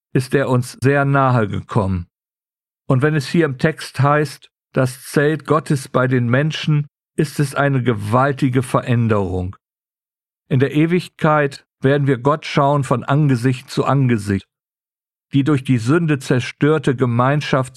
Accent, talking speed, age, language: German, 140 wpm, 50-69, German